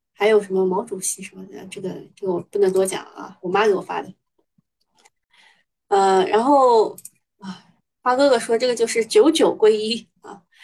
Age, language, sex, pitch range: 20-39, Chinese, female, 205-330 Hz